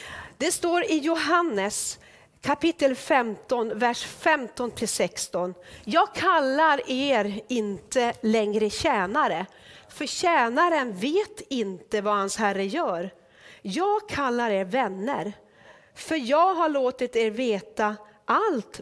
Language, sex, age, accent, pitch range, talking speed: Swedish, female, 40-59, native, 210-290 Hz, 105 wpm